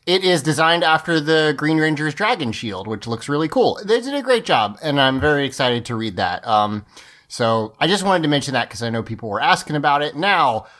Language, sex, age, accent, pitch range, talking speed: English, male, 30-49, American, 125-160 Hz, 235 wpm